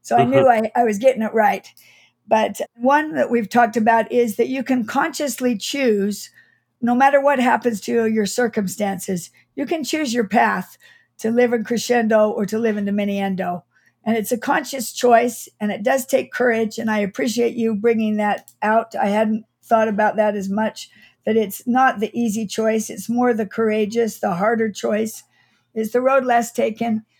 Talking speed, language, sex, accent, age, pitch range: 185 wpm, English, female, American, 60-79, 215-245 Hz